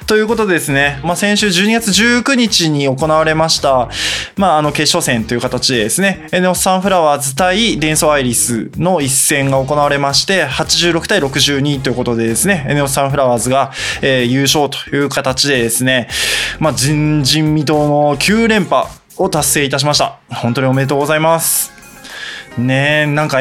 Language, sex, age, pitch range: Japanese, male, 20-39, 135-170 Hz